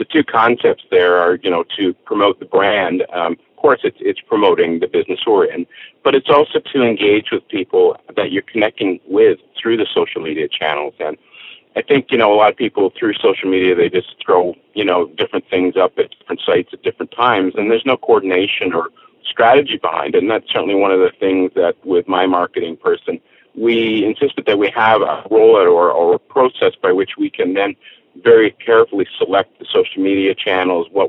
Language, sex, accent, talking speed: English, male, American, 205 wpm